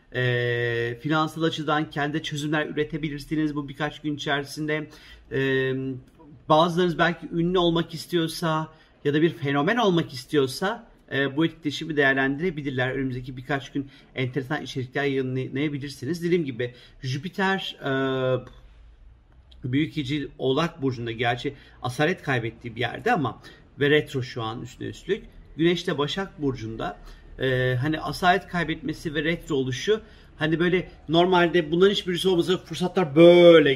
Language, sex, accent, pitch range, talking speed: Turkish, male, native, 135-170 Hz, 125 wpm